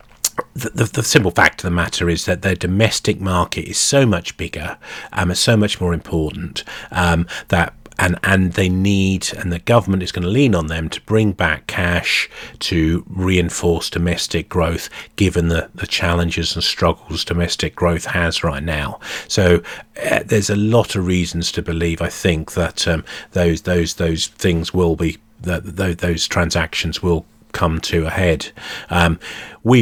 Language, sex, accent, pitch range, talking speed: English, male, British, 85-100 Hz, 170 wpm